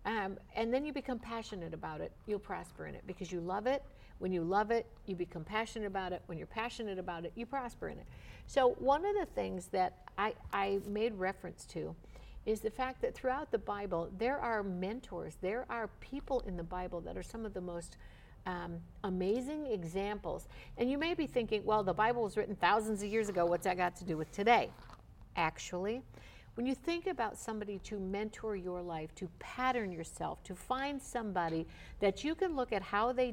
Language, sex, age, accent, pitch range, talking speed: English, female, 60-79, American, 185-245 Hz, 205 wpm